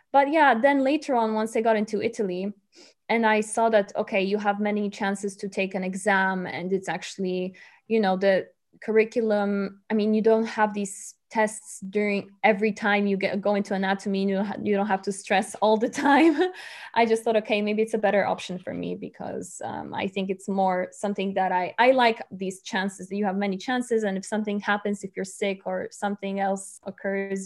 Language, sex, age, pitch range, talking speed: English, female, 20-39, 195-225 Hz, 205 wpm